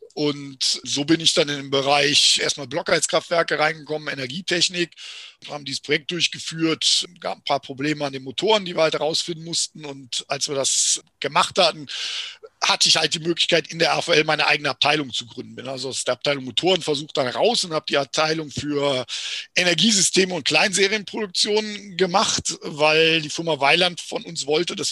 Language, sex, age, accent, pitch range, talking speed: German, male, 50-69, German, 145-180 Hz, 175 wpm